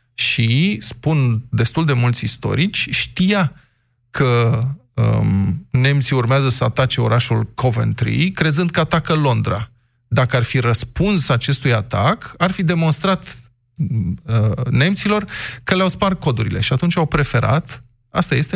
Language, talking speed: Romanian, 130 wpm